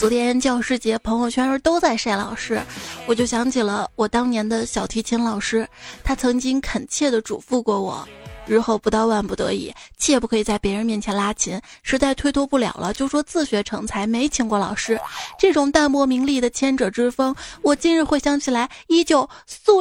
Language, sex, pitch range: Chinese, female, 225-290 Hz